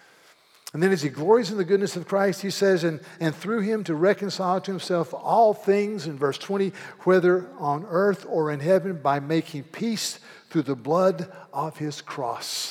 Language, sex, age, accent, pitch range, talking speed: English, male, 50-69, American, 160-225 Hz, 190 wpm